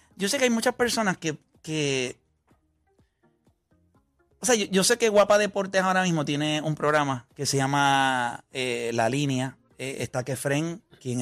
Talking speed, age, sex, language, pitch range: 165 wpm, 30-49, male, Spanish, 130-185 Hz